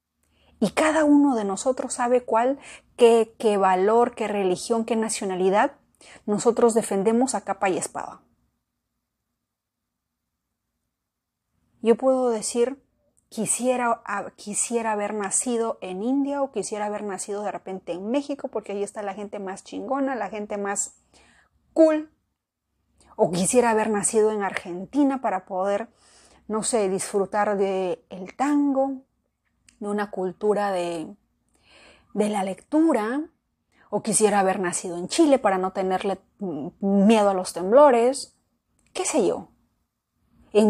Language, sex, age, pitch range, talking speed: Spanish, female, 30-49, 195-240 Hz, 125 wpm